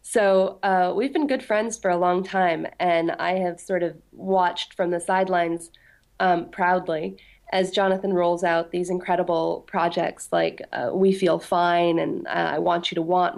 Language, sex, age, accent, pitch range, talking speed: English, female, 20-39, American, 175-195 Hz, 180 wpm